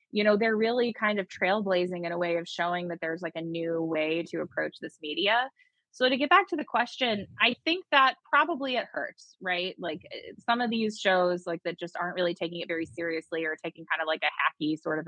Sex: female